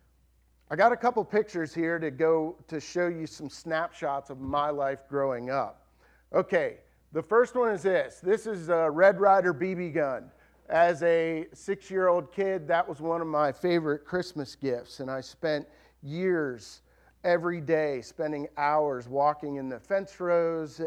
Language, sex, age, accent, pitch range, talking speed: English, male, 40-59, American, 135-170 Hz, 160 wpm